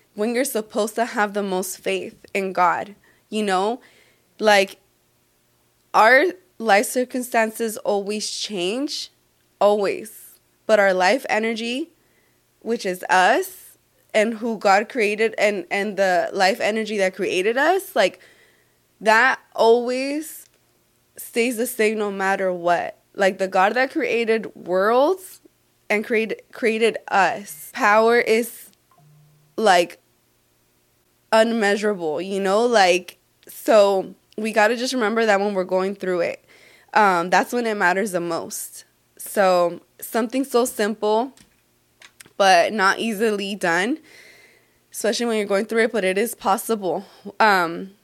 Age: 20-39